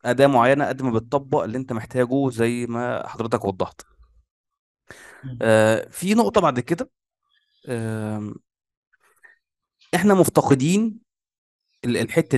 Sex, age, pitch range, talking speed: male, 20-39, 115-150 Hz, 90 wpm